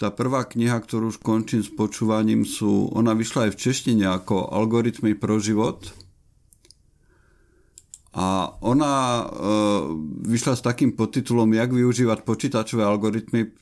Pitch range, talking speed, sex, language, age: 95-110 Hz, 120 wpm, male, Slovak, 50-69